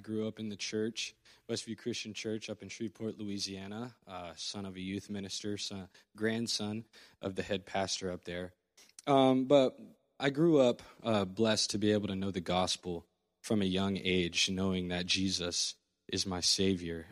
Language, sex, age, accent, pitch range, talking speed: English, male, 20-39, American, 95-110 Hz, 175 wpm